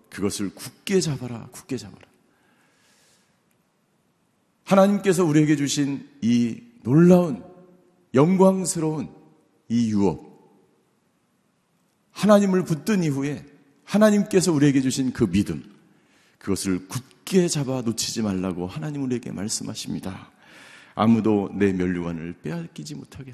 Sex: male